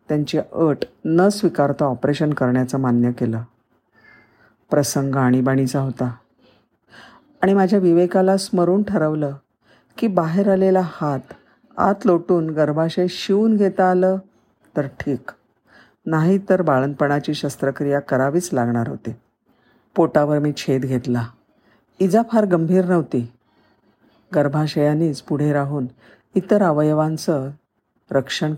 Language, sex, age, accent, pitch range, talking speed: Marathi, female, 50-69, native, 130-180 Hz, 100 wpm